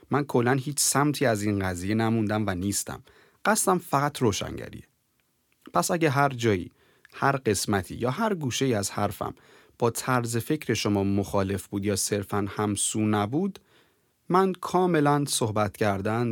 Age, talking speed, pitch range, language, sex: 30-49, 140 wpm, 105-140 Hz, Persian, male